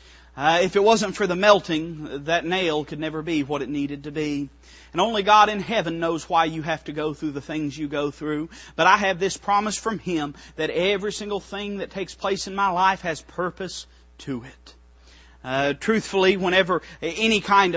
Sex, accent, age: male, American, 40-59